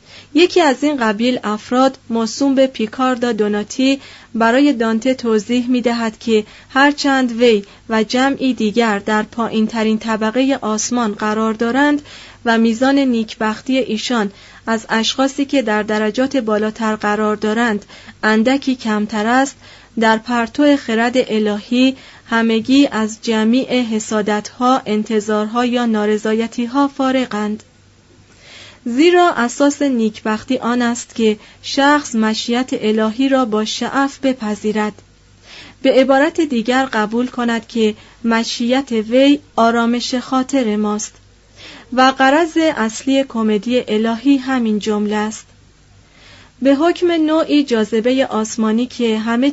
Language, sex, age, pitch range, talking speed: Persian, female, 30-49, 215-265 Hz, 115 wpm